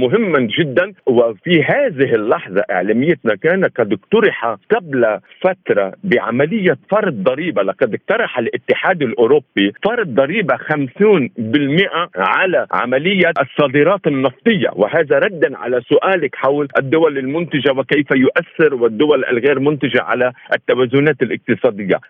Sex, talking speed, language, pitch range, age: male, 105 wpm, Arabic, 135-195 Hz, 50-69